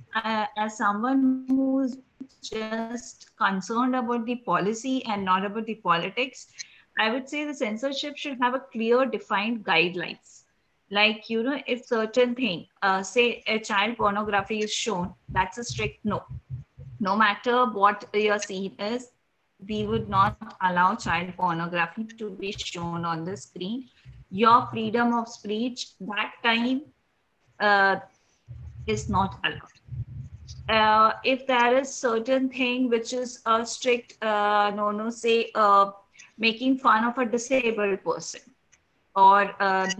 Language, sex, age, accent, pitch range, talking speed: English, female, 20-39, Indian, 205-250 Hz, 140 wpm